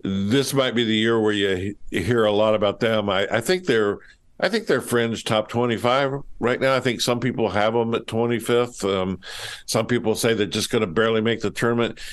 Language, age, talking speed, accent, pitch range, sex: English, 60-79, 220 wpm, American, 95-120 Hz, male